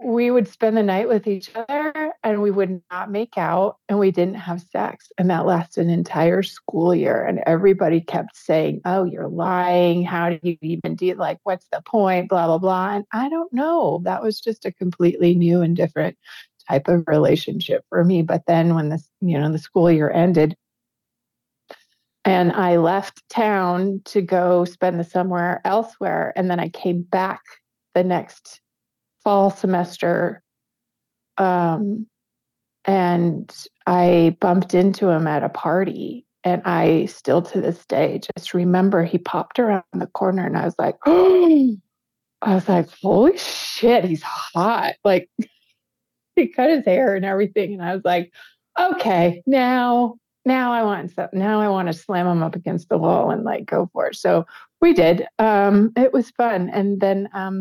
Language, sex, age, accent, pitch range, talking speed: English, female, 30-49, American, 175-210 Hz, 175 wpm